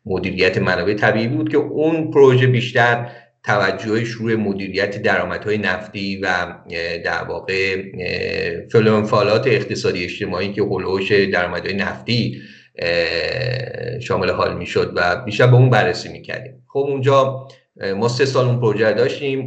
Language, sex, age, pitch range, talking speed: Persian, male, 50-69, 105-135 Hz, 120 wpm